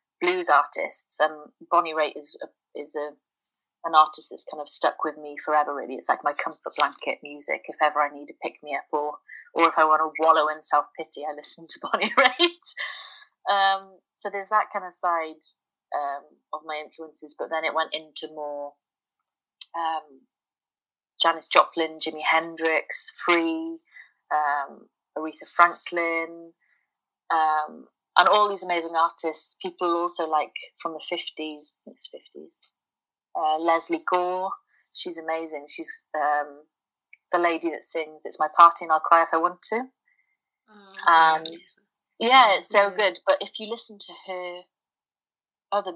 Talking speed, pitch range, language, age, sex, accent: 160 wpm, 155-200 Hz, English, 30-49, female, British